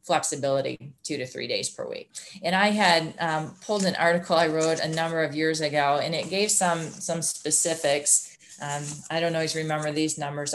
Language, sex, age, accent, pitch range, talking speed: English, female, 30-49, American, 150-175 Hz, 195 wpm